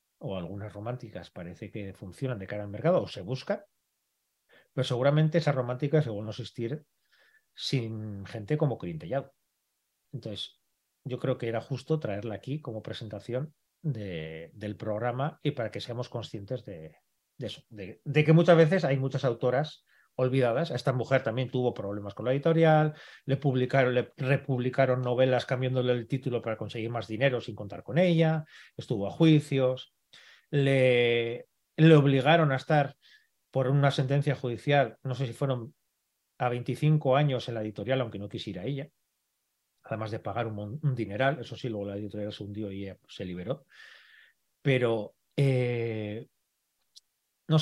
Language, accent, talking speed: Spanish, Spanish, 155 wpm